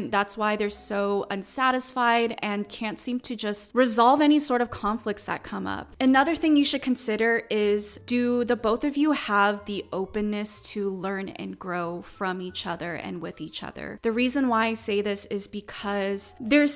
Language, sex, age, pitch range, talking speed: English, female, 20-39, 200-235 Hz, 190 wpm